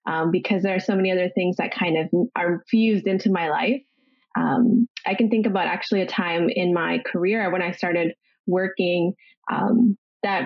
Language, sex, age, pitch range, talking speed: English, female, 20-39, 180-235 Hz, 190 wpm